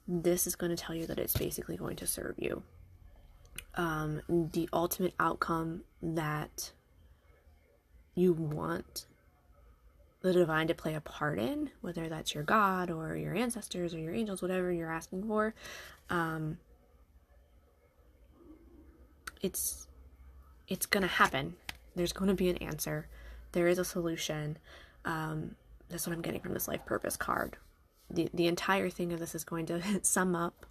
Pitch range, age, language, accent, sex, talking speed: 160-195 Hz, 20-39, English, American, female, 150 wpm